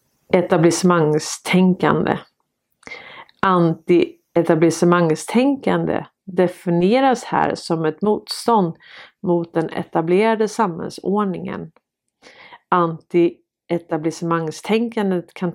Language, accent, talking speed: Swedish, native, 50 wpm